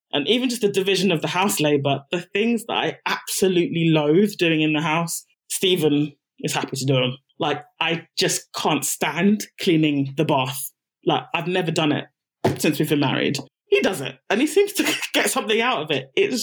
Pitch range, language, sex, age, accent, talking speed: 150-195 Hz, English, male, 20-39, British, 200 wpm